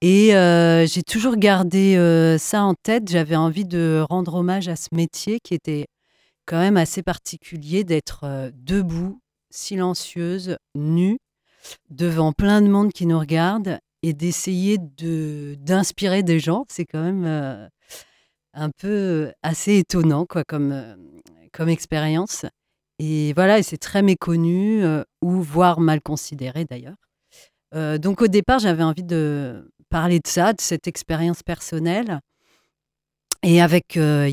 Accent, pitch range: French, 155-190 Hz